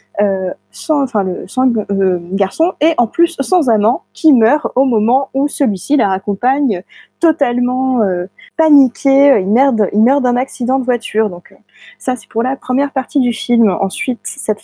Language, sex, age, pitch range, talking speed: French, female, 20-39, 205-270 Hz, 170 wpm